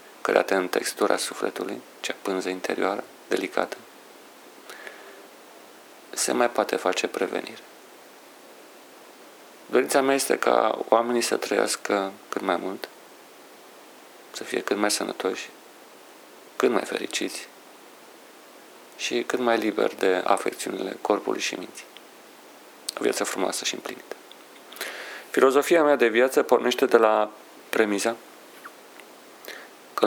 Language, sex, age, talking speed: Romanian, male, 40-59, 110 wpm